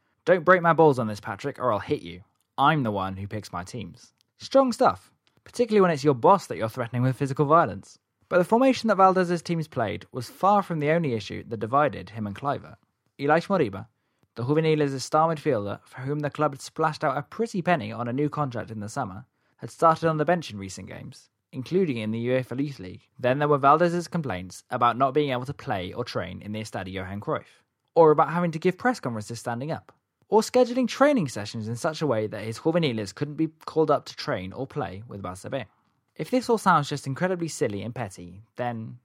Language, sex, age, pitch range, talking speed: English, male, 20-39, 110-160 Hz, 220 wpm